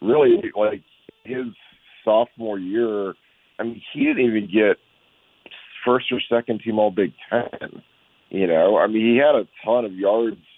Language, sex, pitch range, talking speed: English, male, 90-115 Hz, 160 wpm